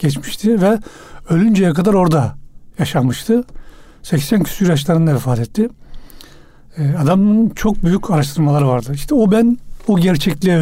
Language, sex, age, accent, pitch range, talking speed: Turkish, male, 60-79, native, 145-190 Hz, 120 wpm